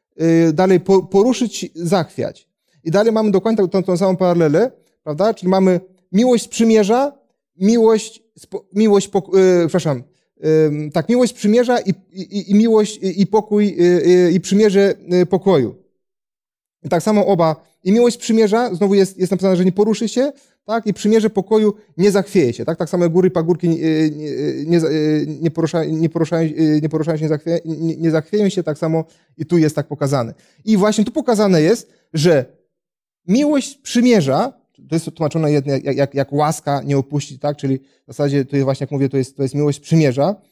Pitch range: 160-210 Hz